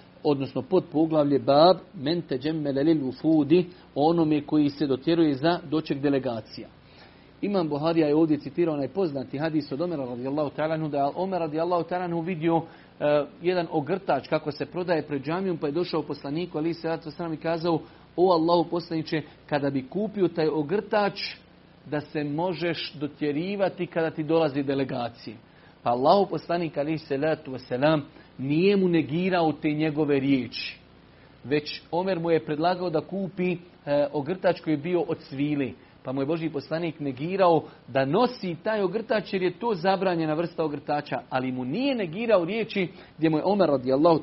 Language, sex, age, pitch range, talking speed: Croatian, male, 40-59, 145-175 Hz, 155 wpm